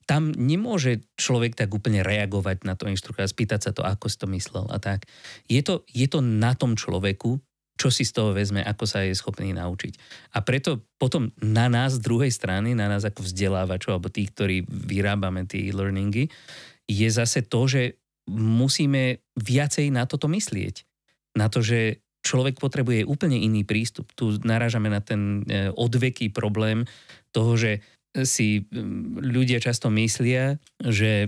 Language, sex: Slovak, male